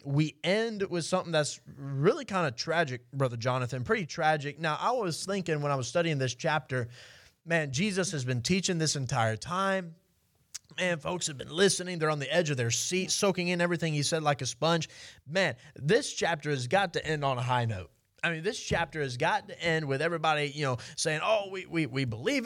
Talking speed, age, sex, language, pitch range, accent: 215 wpm, 20-39, male, English, 140-185 Hz, American